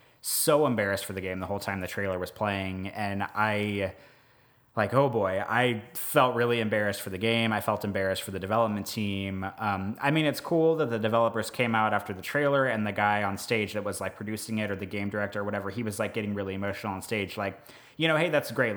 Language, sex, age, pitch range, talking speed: English, male, 20-39, 100-125 Hz, 235 wpm